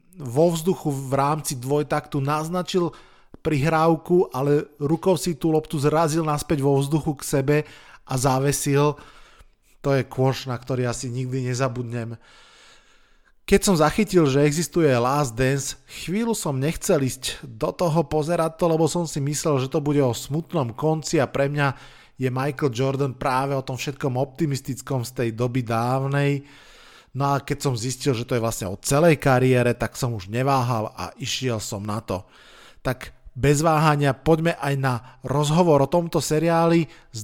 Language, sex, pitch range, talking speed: Slovak, male, 130-160 Hz, 160 wpm